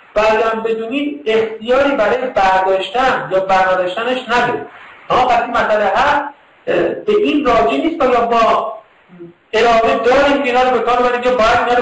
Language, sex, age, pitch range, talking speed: Persian, male, 50-69, 195-255 Hz, 135 wpm